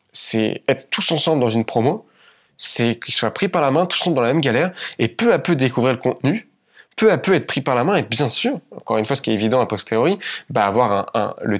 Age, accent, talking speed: 20-39, French, 270 wpm